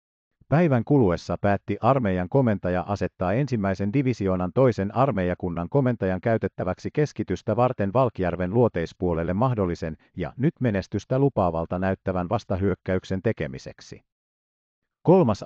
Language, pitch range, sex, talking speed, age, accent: Finnish, 90-125 Hz, male, 95 wpm, 50-69, native